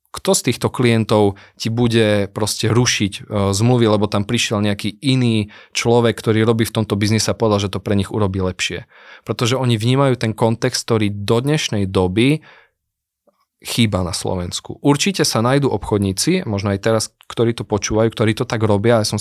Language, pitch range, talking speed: Slovak, 105-125 Hz, 175 wpm